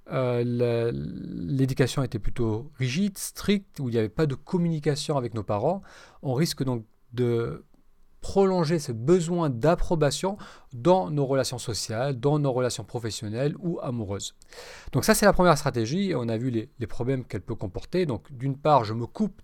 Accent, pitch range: French, 120-170 Hz